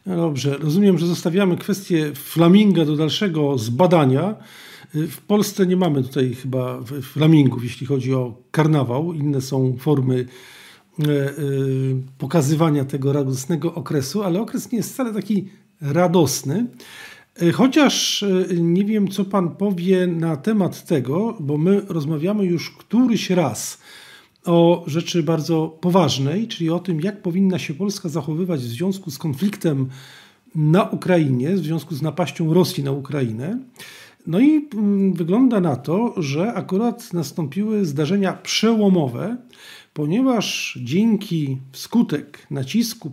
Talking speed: 120 wpm